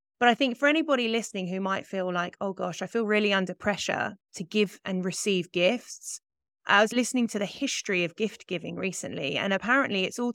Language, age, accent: English, 30-49, British